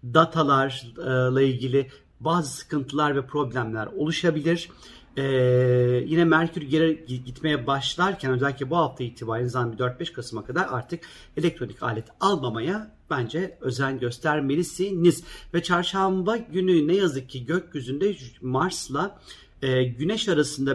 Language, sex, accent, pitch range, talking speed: Turkish, male, native, 130-165 Hz, 110 wpm